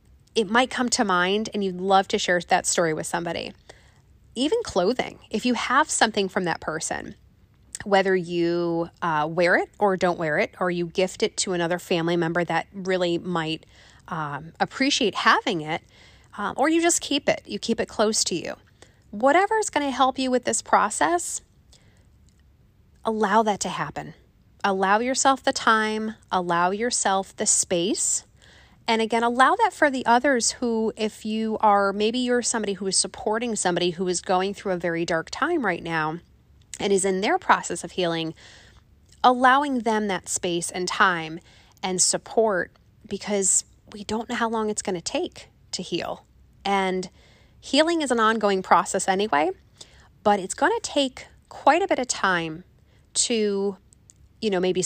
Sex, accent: female, American